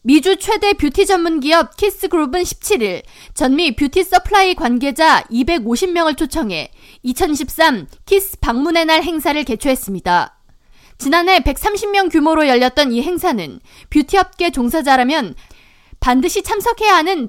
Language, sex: Korean, female